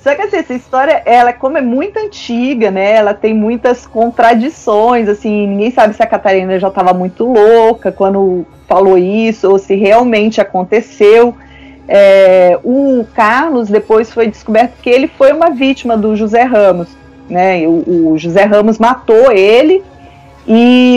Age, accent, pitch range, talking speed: 30-49, Brazilian, 195-245 Hz, 155 wpm